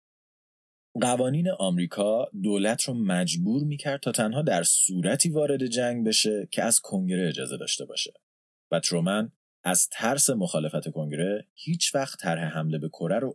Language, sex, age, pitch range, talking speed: Persian, male, 30-49, 80-125 Hz, 140 wpm